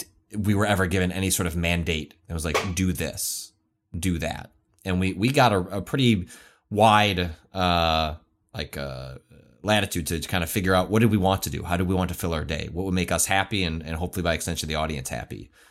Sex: male